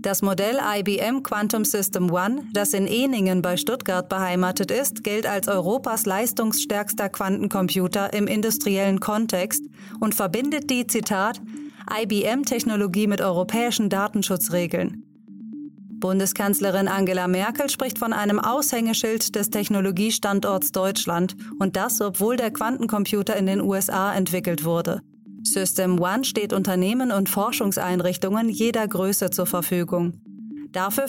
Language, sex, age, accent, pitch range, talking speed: German, female, 30-49, German, 190-230 Hz, 115 wpm